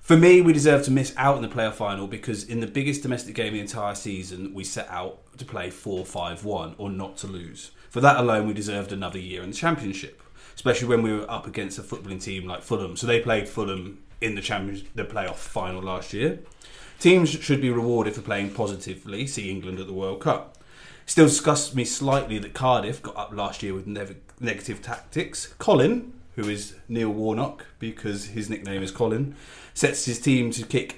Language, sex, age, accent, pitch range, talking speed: English, male, 30-49, British, 100-130 Hz, 200 wpm